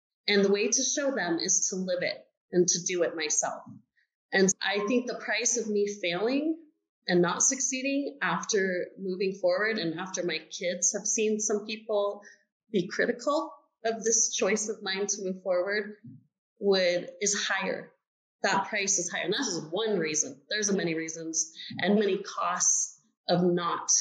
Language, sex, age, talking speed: English, female, 30-49, 165 wpm